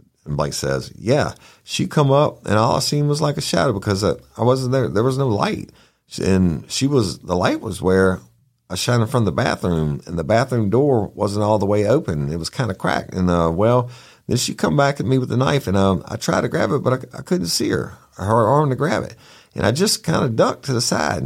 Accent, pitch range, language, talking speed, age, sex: American, 85-135 Hz, English, 255 wpm, 50-69, male